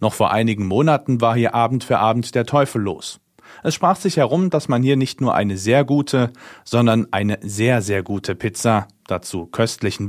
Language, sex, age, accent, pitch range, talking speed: German, male, 40-59, German, 100-135 Hz, 190 wpm